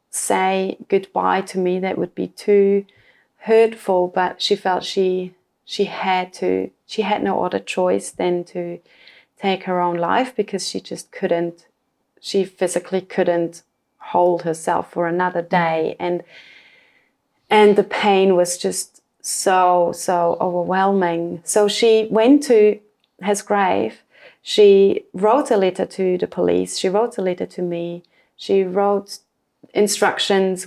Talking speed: 135 wpm